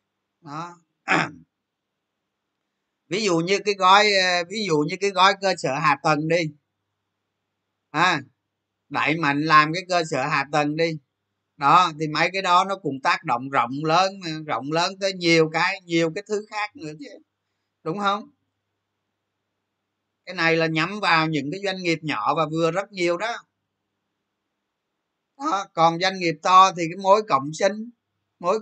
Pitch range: 140-185 Hz